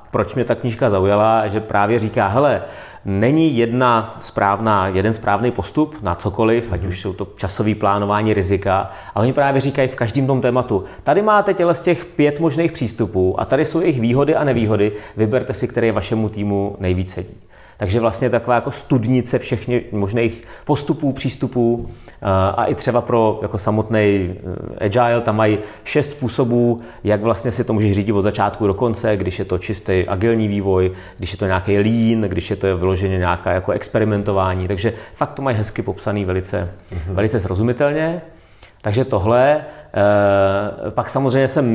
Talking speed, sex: 170 wpm, male